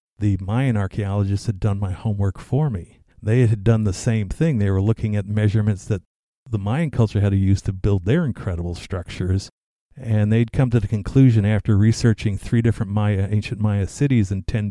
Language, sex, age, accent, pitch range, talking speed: English, male, 50-69, American, 95-115 Hz, 195 wpm